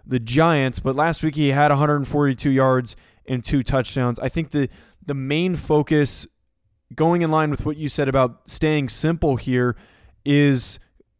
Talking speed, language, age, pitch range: 160 wpm, English, 20-39, 130-155 Hz